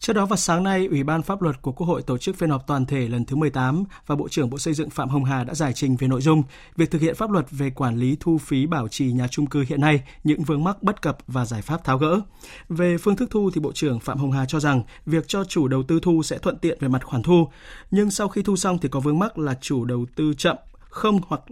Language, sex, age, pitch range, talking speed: Vietnamese, male, 20-39, 130-170 Hz, 290 wpm